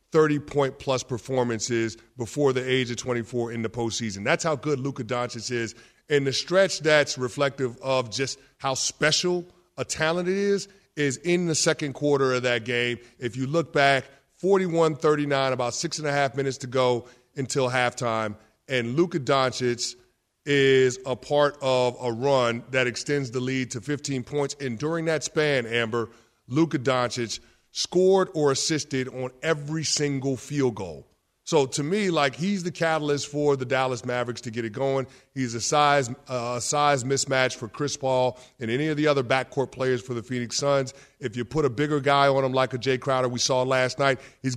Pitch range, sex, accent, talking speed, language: 125-145 Hz, male, American, 185 wpm, English